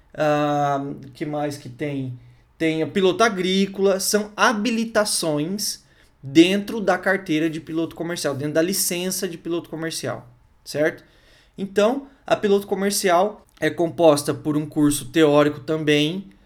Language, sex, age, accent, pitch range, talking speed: Portuguese, male, 20-39, Brazilian, 145-185 Hz, 130 wpm